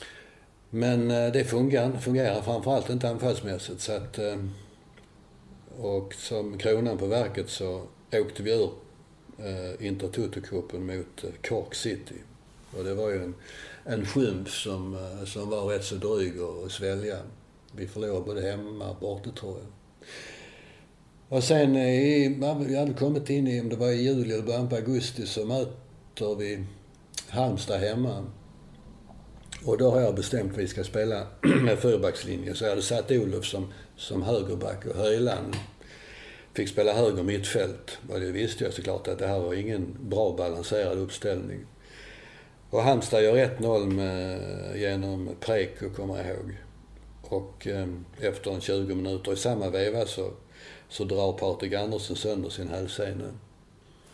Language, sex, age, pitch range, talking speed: English, male, 60-79, 95-125 Hz, 140 wpm